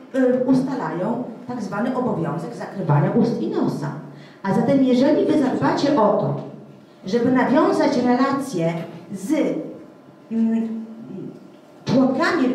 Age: 40-59